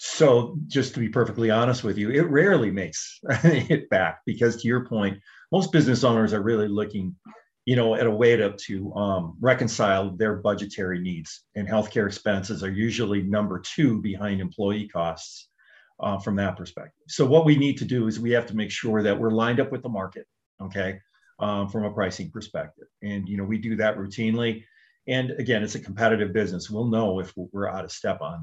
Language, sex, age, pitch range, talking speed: English, male, 40-59, 100-120 Hz, 200 wpm